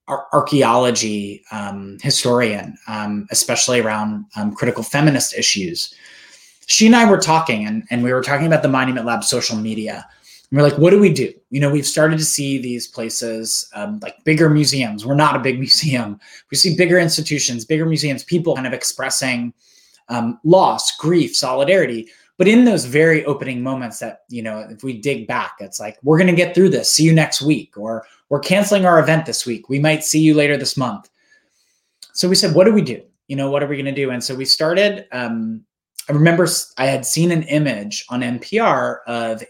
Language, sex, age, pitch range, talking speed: English, male, 20-39, 120-170 Hz, 200 wpm